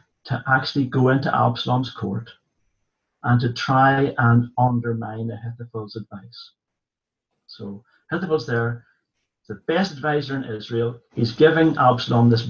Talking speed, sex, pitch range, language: 120 wpm, male, 115-140 Hz, English